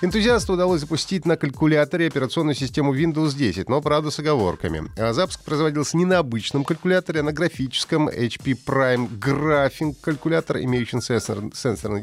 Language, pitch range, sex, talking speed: Russian, 110-155 Hz, male, 140 wpm